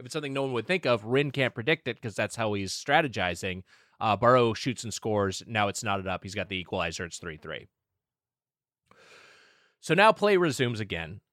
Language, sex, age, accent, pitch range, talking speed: English, male, 30-49, American, 100-135 Hz, 195 wpm